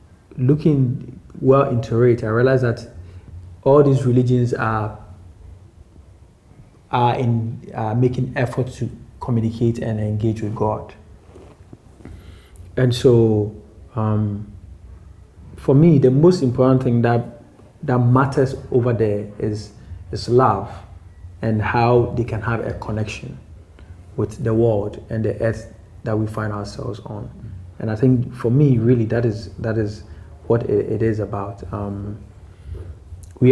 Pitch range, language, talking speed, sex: 105-120 Hz, English, 130 wpm, male